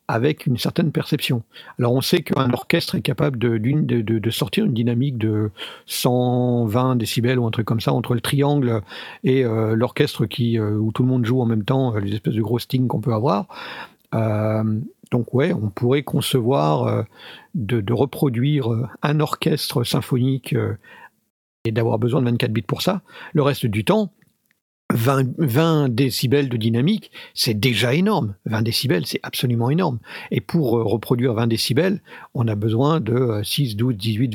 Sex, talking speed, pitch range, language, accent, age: male, 175 wpm, 120-155 Hz, French, French, 50-69